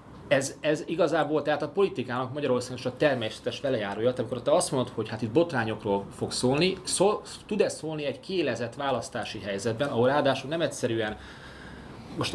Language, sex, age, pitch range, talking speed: Hungarian, male, 30-49, 110-150 Hz, 155 wpm